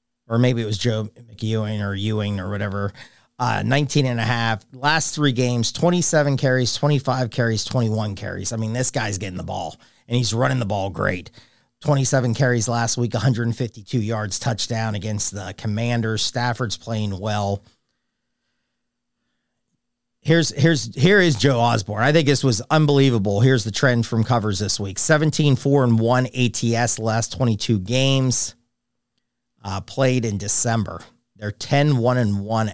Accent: American